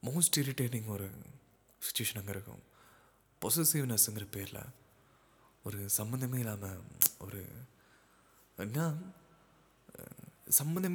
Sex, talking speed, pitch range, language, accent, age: male, 75 wpm, 105-130 Hz, Tamil, native, 20-39